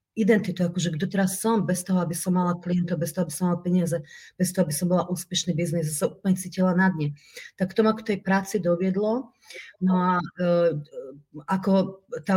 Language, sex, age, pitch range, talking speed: Czech, female, 30-49, 175-195 Hz, 200 wpm